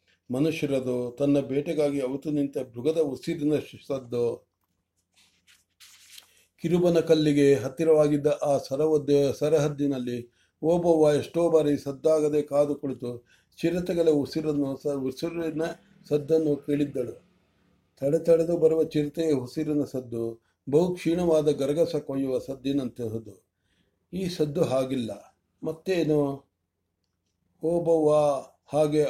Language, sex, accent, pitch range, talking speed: English, male, Indian, 135-160 Hz, 75 wpm